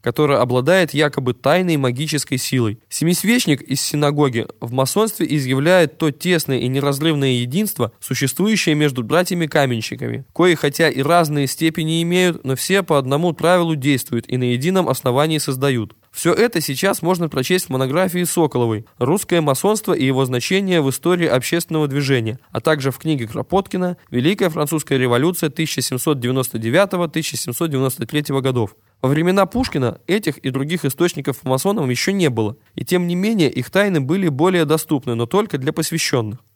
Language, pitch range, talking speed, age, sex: Russian, 130-175 Hz, 145 wpm, 20-39, male